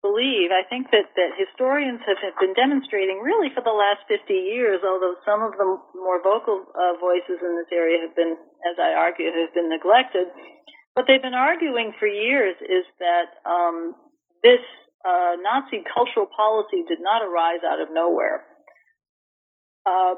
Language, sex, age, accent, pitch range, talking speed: English, female, 40-59, American, 180-260 Hz, 165 wpm